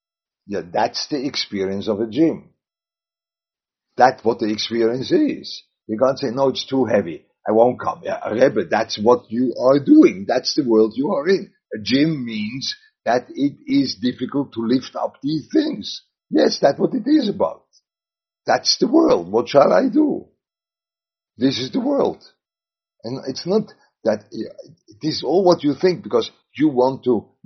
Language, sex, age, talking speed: English, male, 50-69, 165 wpm